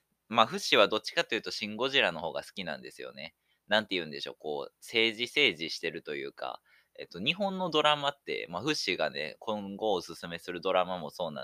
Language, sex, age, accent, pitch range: Japanese, male, 20-39, native, 90-130 Hz